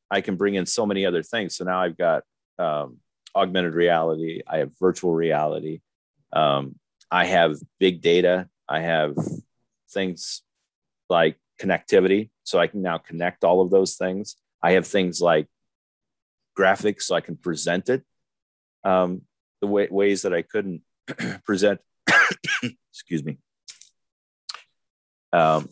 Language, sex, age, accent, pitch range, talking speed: English, male, 30-49, American, 80-95 Hz, 135 wpm